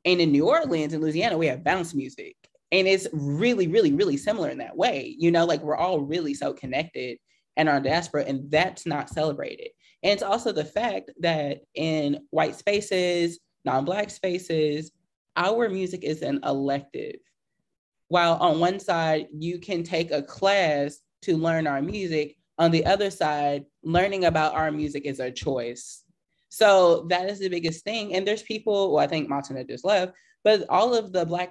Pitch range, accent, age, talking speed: 150-190 Hz, American, 20-39, 180 wpm